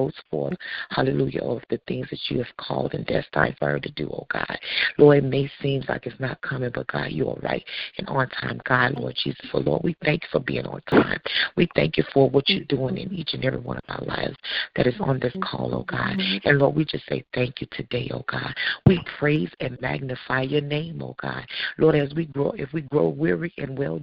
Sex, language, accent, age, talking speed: female, English, American, 40-59, 240 wpm